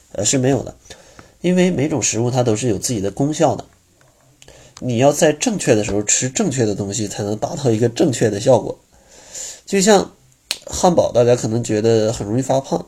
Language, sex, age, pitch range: Chinese, male, 20-39, 105-140 Hz